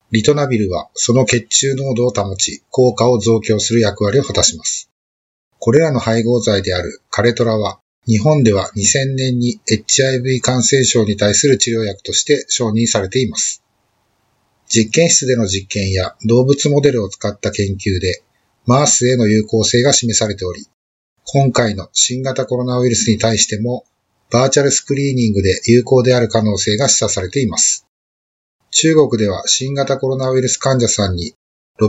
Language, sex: Japanese, male